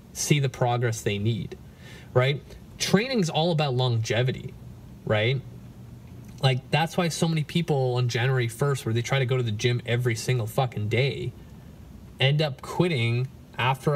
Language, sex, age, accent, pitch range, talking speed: English, male, 20-39, American, 125-155 Hz, 160 wpm